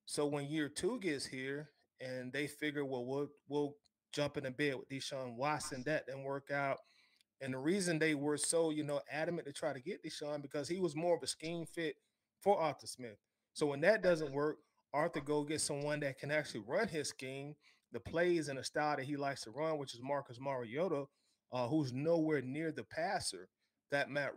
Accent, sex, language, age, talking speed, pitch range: American, male, English, 30-49, 210 wpm, 140-160 Hz